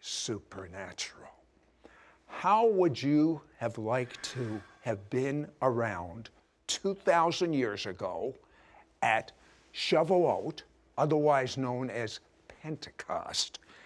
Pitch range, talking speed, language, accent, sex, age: 125-205 Hz, 85 wpm, English, American, male, 50-69